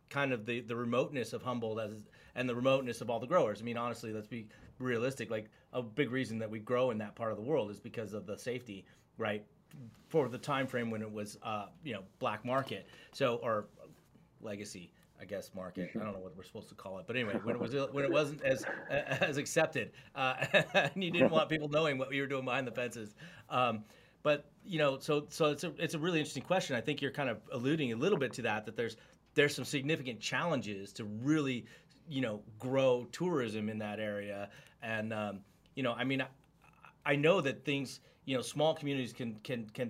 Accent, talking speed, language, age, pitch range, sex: American, 225 wpm, English, 30-49, 110-140 Hz, male